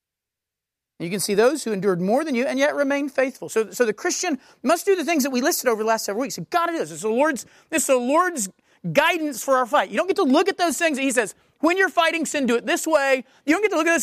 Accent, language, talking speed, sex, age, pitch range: American, English, 290 wpm, male, 40-59, 215-310 Hz